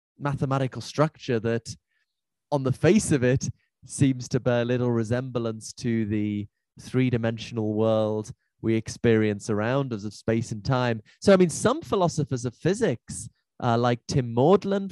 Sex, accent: male, British